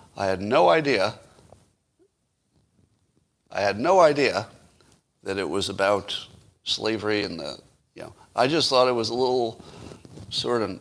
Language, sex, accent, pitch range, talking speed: English, male, American, 105-150 Hz, 145 wpm